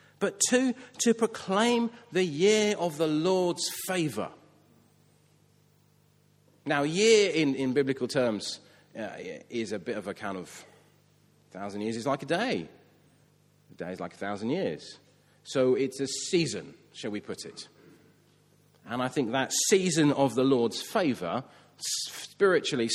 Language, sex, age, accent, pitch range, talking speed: English, male, 40-59, British, 105-155 Hz, 145 wpm